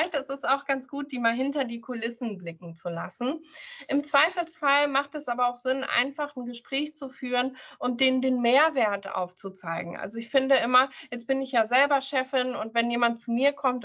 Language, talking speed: German, 200 wpm